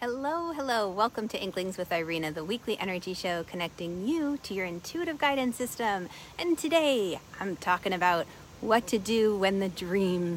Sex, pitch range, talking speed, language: female, 180-245 Hz, 170 wpm, English